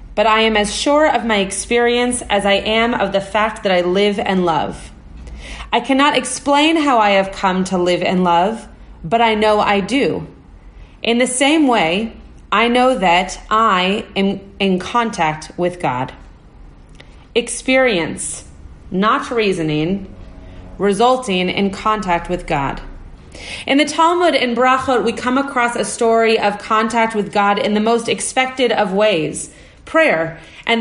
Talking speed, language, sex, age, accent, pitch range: 150 wpm, English, female, 30-49, American, 190-250 Hz